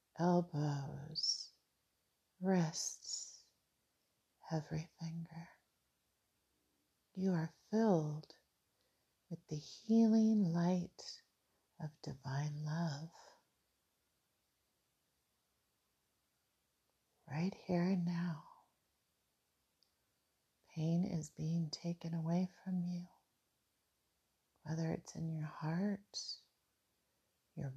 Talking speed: 65 wpm